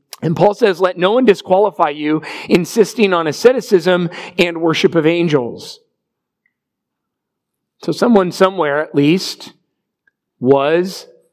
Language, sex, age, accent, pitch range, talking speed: English, male, 40-59, American, 155-205 Hz, 110 wpm